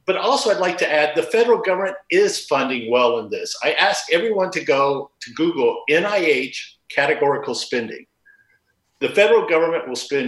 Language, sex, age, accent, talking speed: English, male, 50-69, American, 170 wpm